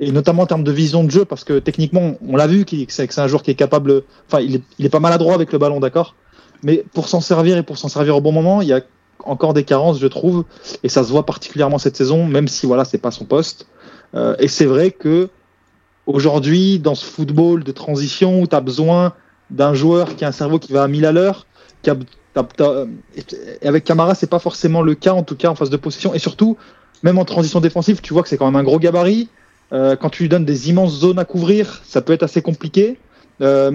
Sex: male